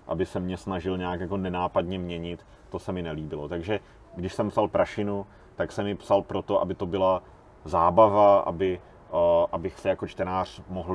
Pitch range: 90-105 Hz